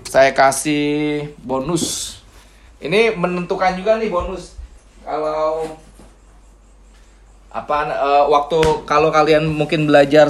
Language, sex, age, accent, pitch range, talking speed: Indonesian, male, 20-39, native, 125-160 Hz, 95 wpm